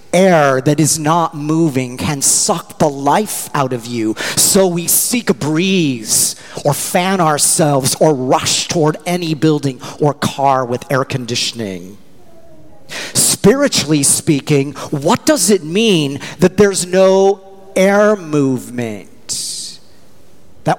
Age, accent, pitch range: 40-59, American, 140-190 Hz